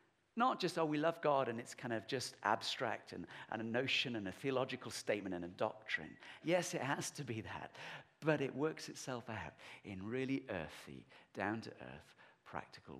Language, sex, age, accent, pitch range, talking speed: English, male, 50-69, British, 100-135 Hz, 180 wpm